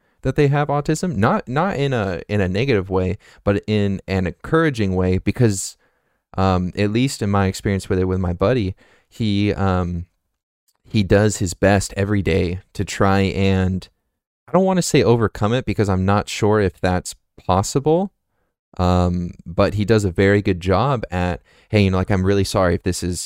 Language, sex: English, male